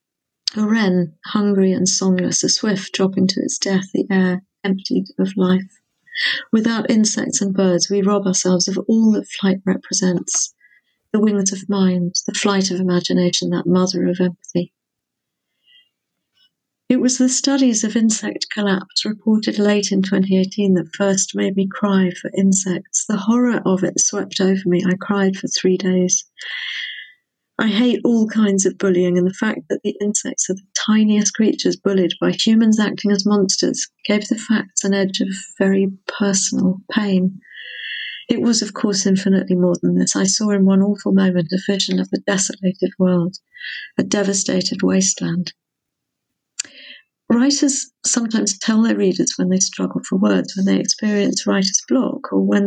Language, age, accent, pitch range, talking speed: English, 50-69, British, 185-220 Hz, 160 wpm